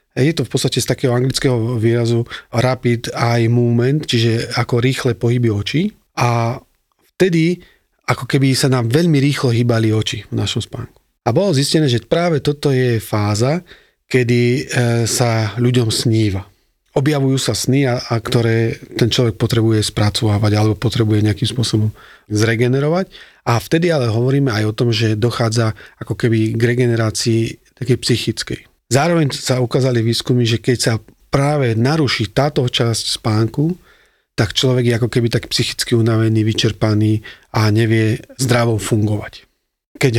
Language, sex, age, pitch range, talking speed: Slovak, male, 40-59, 115-130 Hz, 145 wpm